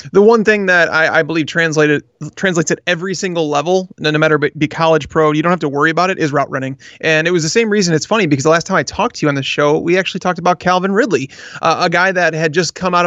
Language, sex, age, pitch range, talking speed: English, male, 30-49, 150-180 Hz, 280 wpm